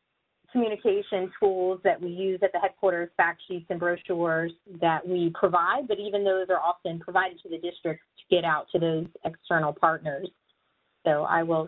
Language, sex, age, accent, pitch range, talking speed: English, female, 30-49, American, 170-200 Hz, 175 wpm